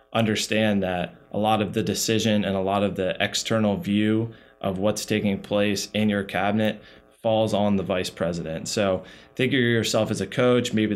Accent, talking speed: American, 185 wpm